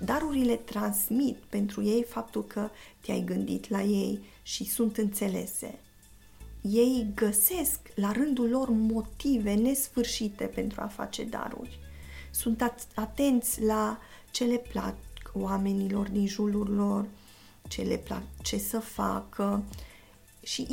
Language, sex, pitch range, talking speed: Romanian, female, 200-230 Hz, 120 wpm